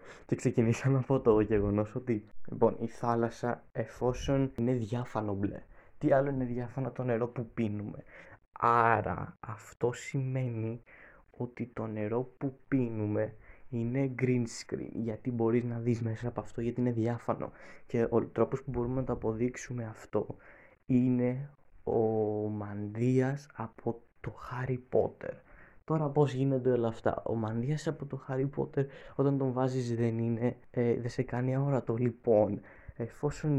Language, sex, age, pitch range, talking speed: Greek, male, 20-39, 115-135 Hz, 140 wpm